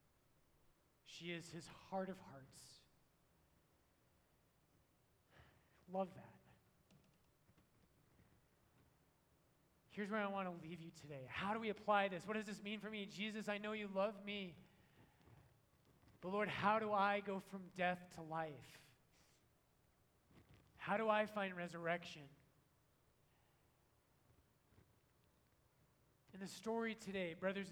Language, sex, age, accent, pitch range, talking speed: English, male, 30-49, American, 165-205 Hz, 115 wpm